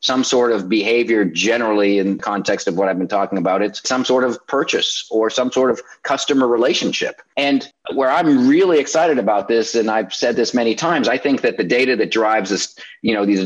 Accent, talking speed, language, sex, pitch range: American, 215 wpm, English, male, 115-145 Hz